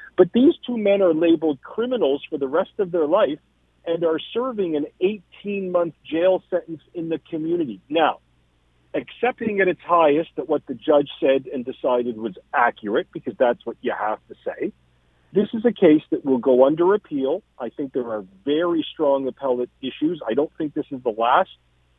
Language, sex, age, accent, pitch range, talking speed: English, male, 50-69, American, 135-185 Hz, 185 wpm